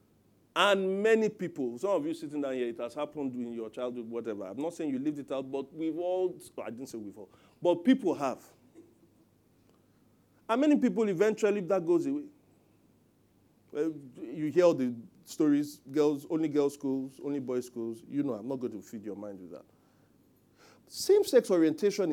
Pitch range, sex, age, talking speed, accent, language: 130-215 Hz, male, 40-59, 185 wpm, Nigerian, English